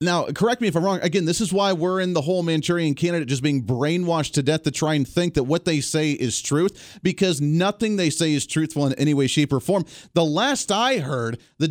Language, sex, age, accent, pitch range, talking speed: English, male, 30-49, American, 135-185 Hz, 245 wpm